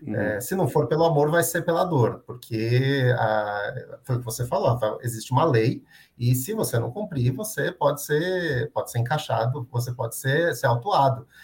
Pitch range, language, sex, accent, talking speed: 120-145 Hz, Portuguese, male, Brazilian, 190 wpm